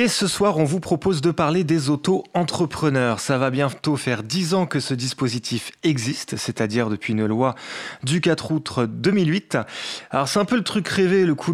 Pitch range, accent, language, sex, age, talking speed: 120-160 Hz, French, French, male, 30-49, 190 wpm